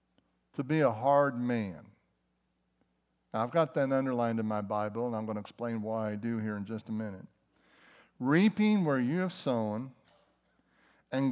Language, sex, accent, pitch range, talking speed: English, male, American, 115-140 Hz, 170 wpm